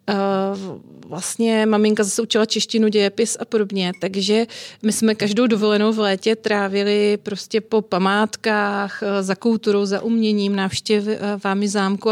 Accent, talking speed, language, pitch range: native, 125 wpm, Czech, 195-220 Hz